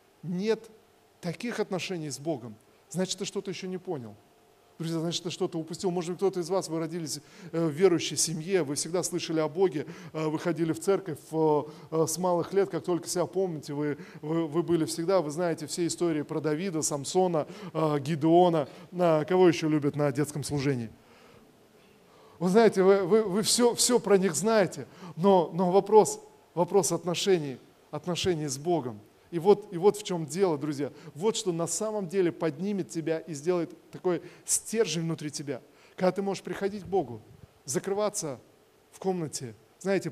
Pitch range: 155-185 Hz